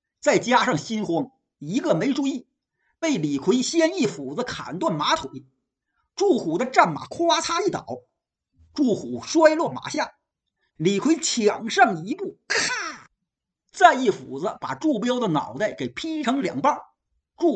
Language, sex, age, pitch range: Chinese, male, 50-69, 225-315 Hz